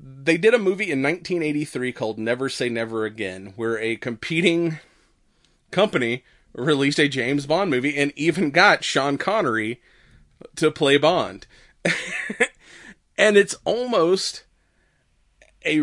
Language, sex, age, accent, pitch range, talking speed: English, male, 30-49, American, 120-150 Hz, 120 wpm